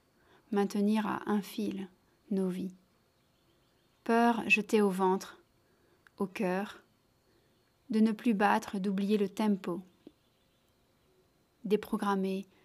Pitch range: 190-225 Hz